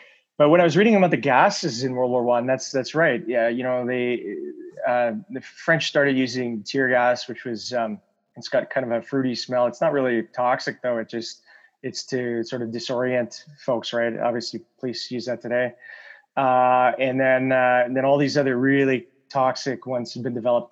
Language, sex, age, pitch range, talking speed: English, male, 20-39, 120-140 Hz, 195 wpm